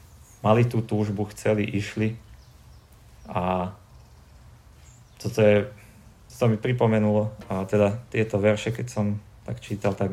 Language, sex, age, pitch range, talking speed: Slovak, male, 30-49, 100-110 Hz, 120 wpm